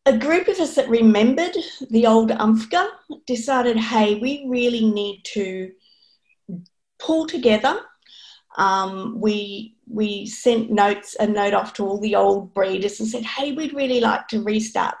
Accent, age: Australian, 30-49